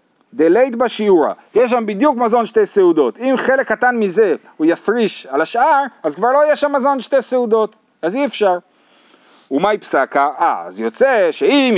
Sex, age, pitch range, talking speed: male, 40-59, 160-265 Hz, 175 wpm